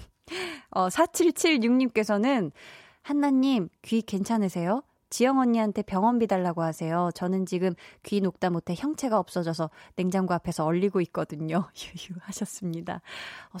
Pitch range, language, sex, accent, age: 175-240 Hz, Korean, female, native, 20-39